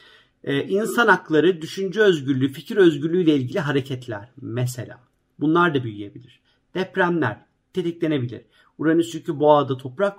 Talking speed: 110 wpm